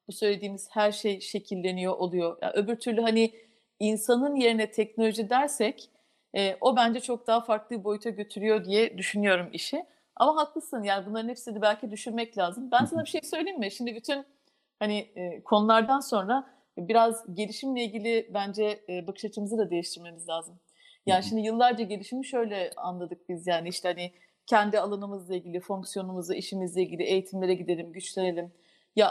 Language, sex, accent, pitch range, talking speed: Turkish, female, native, 200-240 Hz, 155 wpm